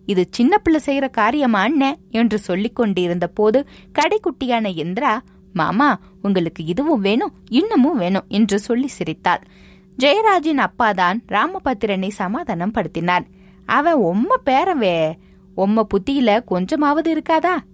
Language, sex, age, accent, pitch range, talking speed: Tamil, female, 20-39, native, 190-275 Hz, 110 wpm